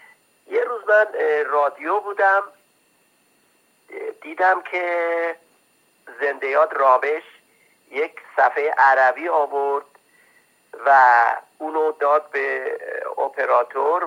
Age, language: 50-69, Persian